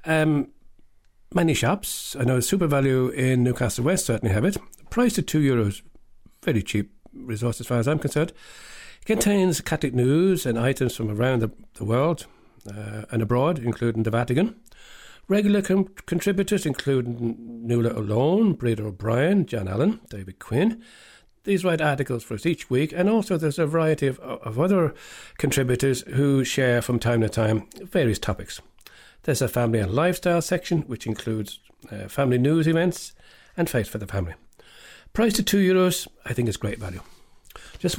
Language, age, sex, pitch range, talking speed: English, 60-79, male, 115-175 Hz, 165 wpm